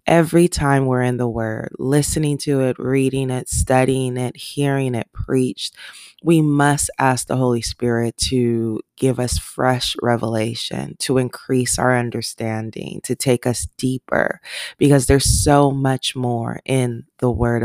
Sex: female